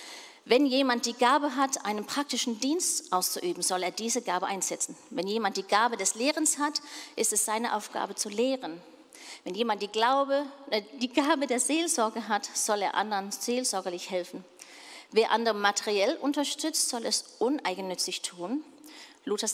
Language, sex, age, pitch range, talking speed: German, female, 40-59, 210-285 Hz, 150 wpm